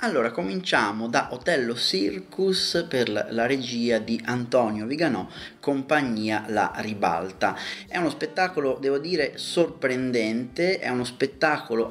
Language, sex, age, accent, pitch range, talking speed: Italian, male, 30-49, native, 110-135 Hz, 115 wpm